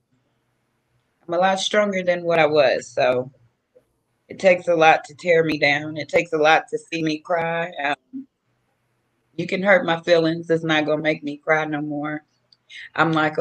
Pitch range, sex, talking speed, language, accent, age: 140-170 Hz, female, 190 wpm, English, American, 30-49